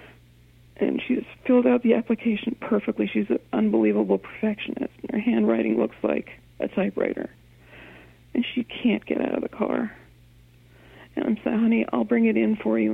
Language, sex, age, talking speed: English, female, 50-69, 160 wpm